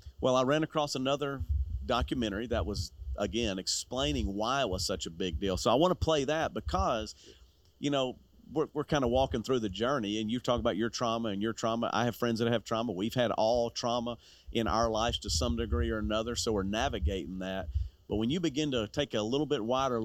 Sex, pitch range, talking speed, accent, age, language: male, 95-120 Hz, 225 wpm, American, 40-59, English